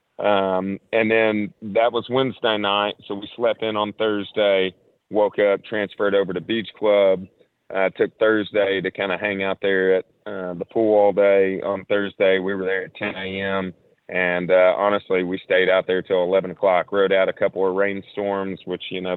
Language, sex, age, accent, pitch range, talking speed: English, male, 30-49, American, 95-105 Hz, 195 wpm